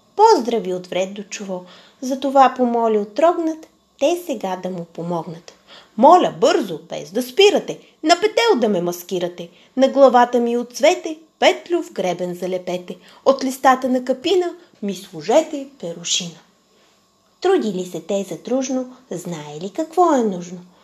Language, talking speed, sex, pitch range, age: Bulgarian, 140 wpm, female, 185-280 Hz, 30-49